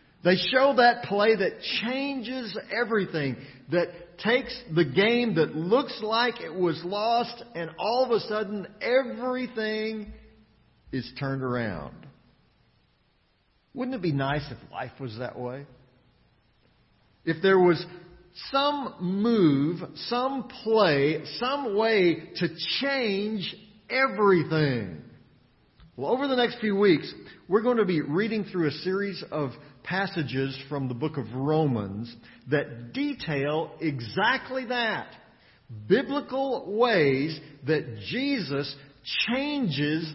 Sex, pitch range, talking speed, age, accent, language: male, 135-220 Hz, 115 wpm, 50-69, American, English